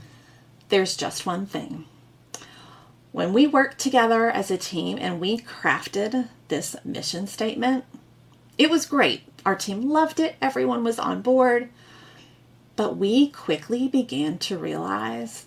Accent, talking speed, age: American, 130 wpm, 30-49